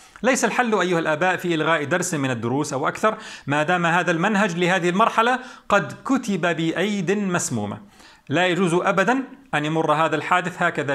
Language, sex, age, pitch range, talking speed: Arabic, male, 40-59, 150-205 Hz, 160 wpm